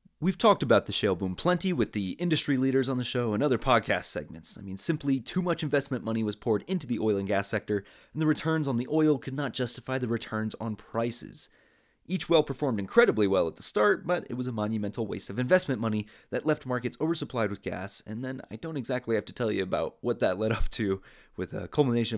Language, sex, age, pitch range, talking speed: English, male, 30-49, 105-145 Hz, 235 wpm